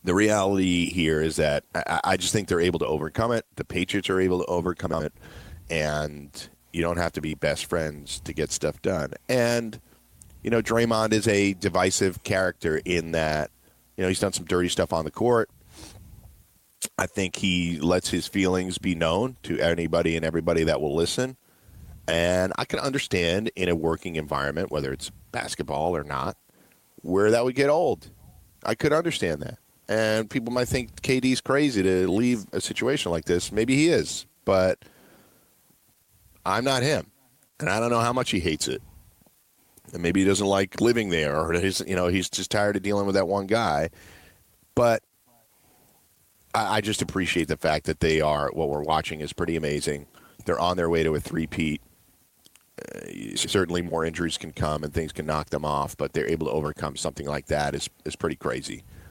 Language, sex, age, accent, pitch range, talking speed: English, male, 40-59, American, 80-100 Hz, 190 wpm